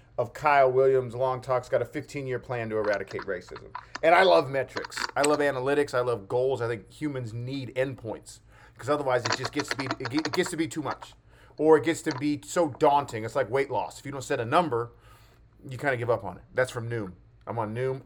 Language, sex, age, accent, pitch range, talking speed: English, male, 40-59, American, 125-155 Hz, 235 wpm